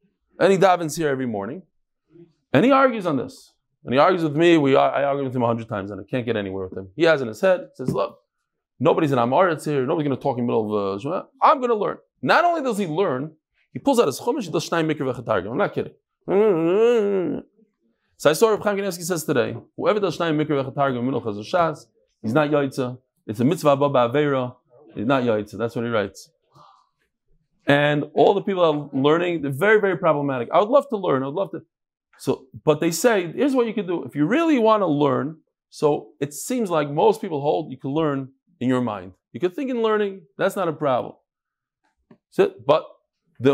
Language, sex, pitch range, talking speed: English, male, 130-195 Hz, 220 wpm